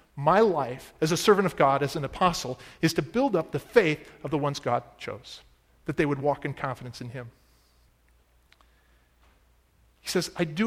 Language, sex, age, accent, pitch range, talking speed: English, male, 40-59, American, 125-180 Hz, 185 wpm